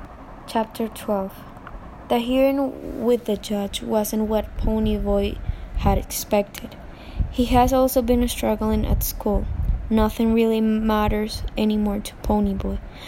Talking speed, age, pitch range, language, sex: 125 wpm, 10-29, 205-235 Hz, English, female